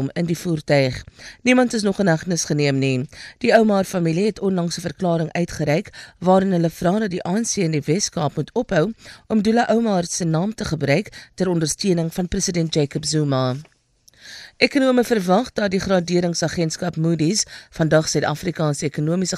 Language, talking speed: English, 160 wpm